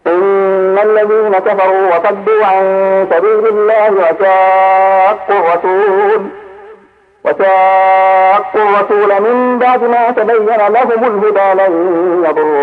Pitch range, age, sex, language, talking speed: 155-195 Hz, 50-69, male, Arabic, 85 wpm